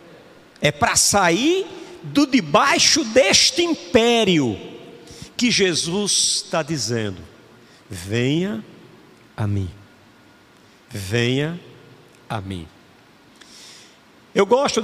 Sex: male